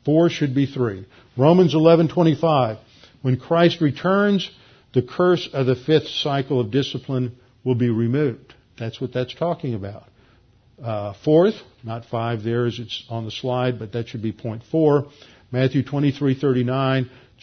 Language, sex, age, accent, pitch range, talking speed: English, male, 50-69, American, 120-145 Hz, 150 wpm